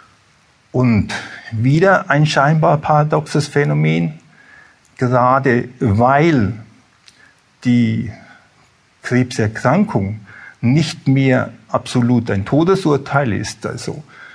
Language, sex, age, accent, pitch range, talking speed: German, male, 50-69, German, 115-145 Hz, 70 wpm